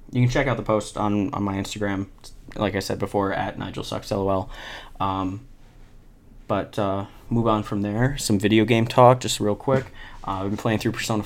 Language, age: English, 20-39